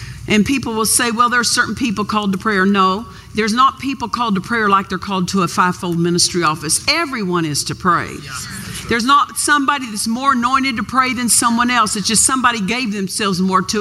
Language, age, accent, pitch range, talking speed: English, 50-69, American, 205-285 Hz, 215 wpm